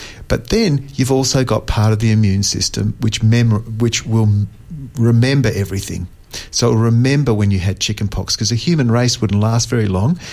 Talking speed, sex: 170 wpm, male